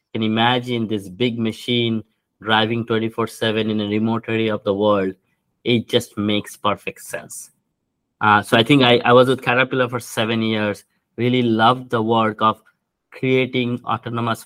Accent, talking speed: Indian, 160 wpm